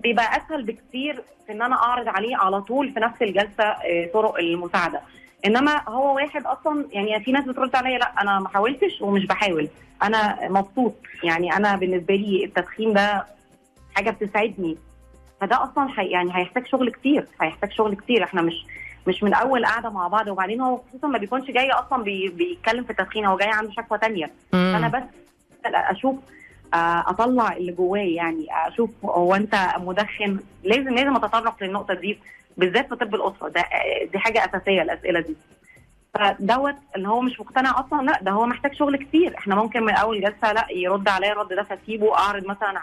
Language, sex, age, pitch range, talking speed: Arabic, female, 20-39, 195-240 Hz, 170 wpm